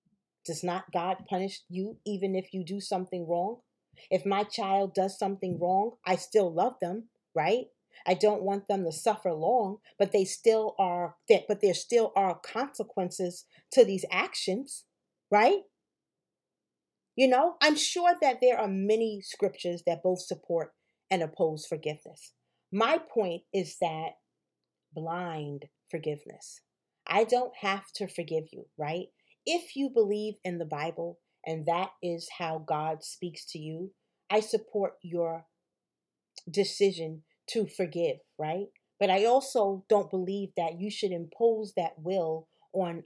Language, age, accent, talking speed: English, 40-59, American, 145 wpm